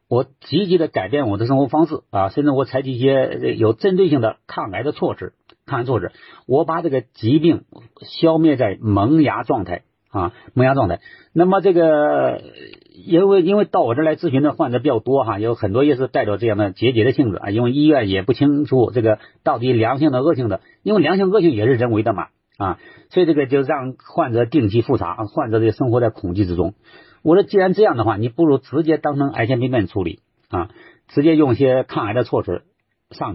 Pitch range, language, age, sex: 115-160 Hz, Chinese, 50-69, male